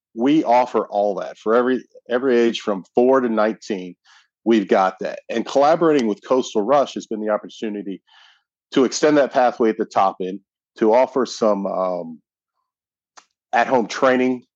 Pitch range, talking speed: 105-120 Hz, 155 wpm